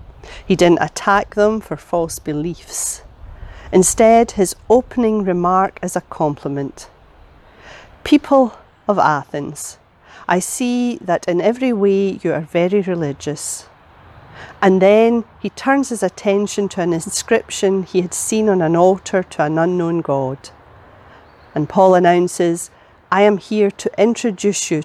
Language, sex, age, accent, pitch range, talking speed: English, female, 40-59, British, 150-195 Hz, 135 wpm